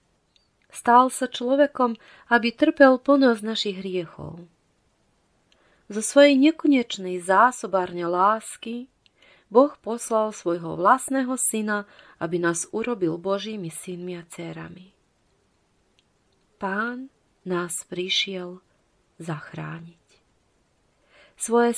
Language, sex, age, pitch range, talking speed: Slovak, female, 30-49, 180-240 Hz, 85 wpm